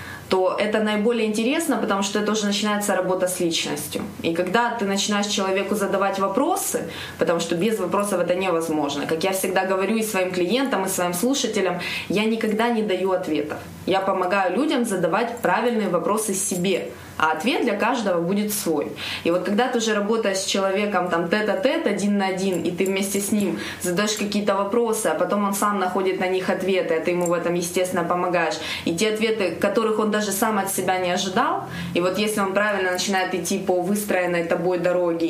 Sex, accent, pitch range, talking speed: female, native, 180-210 Hz, 190 wpm